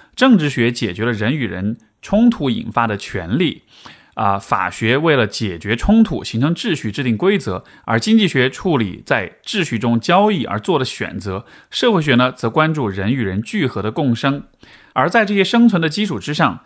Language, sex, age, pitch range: Chinese, male, 20-39, 115-165 Hz